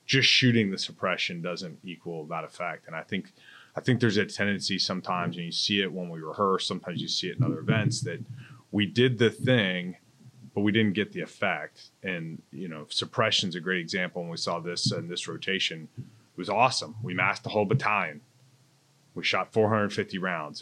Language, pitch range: English, 85-120 Hz